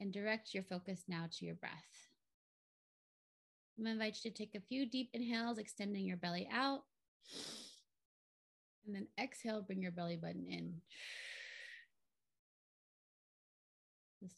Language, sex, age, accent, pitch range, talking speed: English, female, 30-49, American, 185-255 Hz, 130 wpm